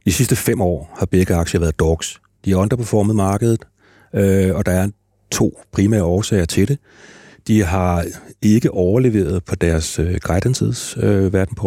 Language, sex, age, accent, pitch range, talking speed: Danish, male, 40-59, native, 90-105 Hz, 150 wpm